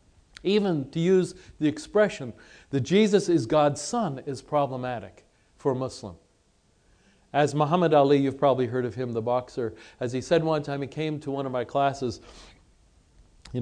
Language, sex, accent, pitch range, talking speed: English, male, American, 125-165 Hz, 170 wpm